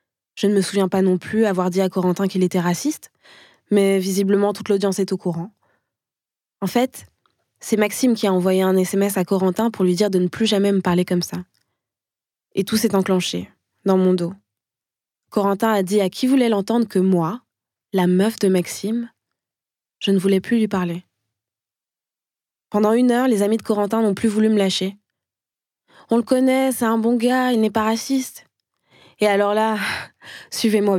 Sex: female